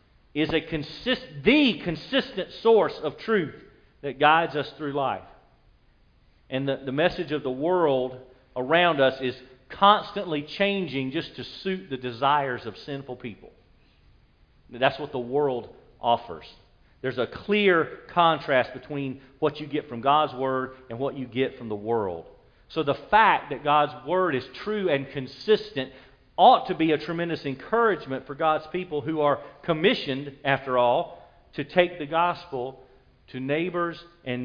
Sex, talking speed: male, 150 wpm